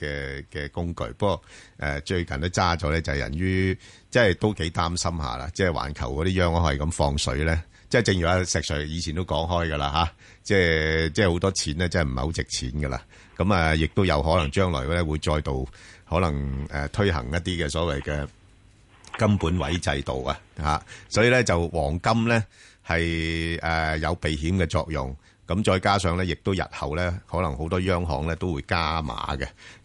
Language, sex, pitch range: Chinese, male, 75-95 Hz